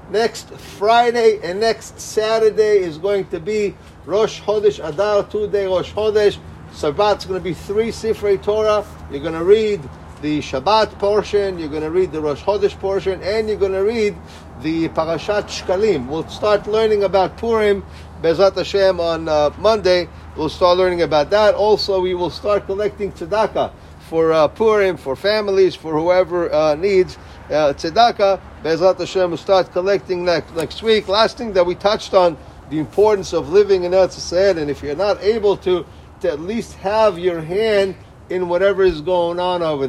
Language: English